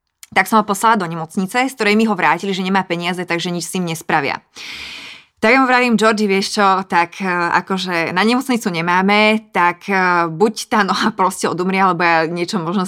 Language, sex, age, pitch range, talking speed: Slovak, female, 20-39, 175-195 Hz, 190 wpm